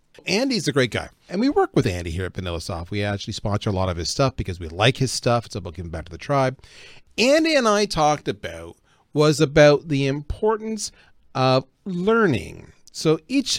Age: 40-59